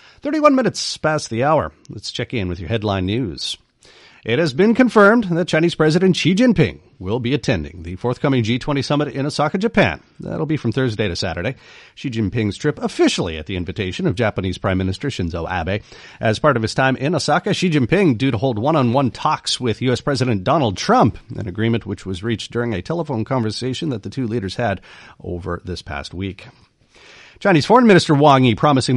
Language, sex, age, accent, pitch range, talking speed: English, male, 40-59, American, 105-155 Hz, 195 wpm